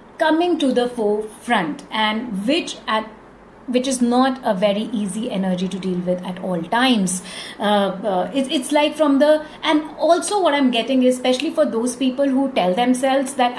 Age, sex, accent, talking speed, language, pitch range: 30-49, female, Indian, 180 wpm, English, 200-265 Hz